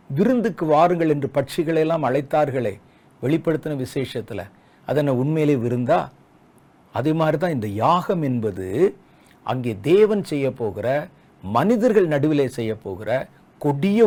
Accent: native